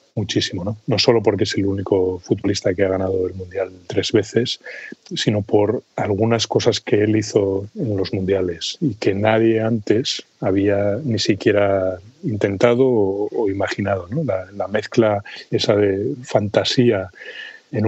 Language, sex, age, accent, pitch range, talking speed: Spanish, male, 30-49, Spanish, 95-105 Hz, 150 wpm